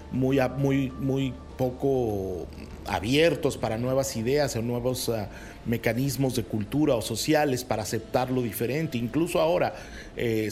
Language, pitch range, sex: Spanish, 115-145 Hz, male